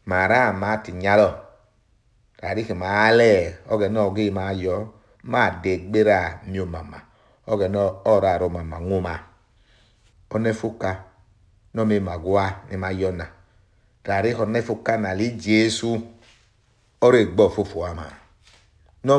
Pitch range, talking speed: 95-115 Hz, 125 wpm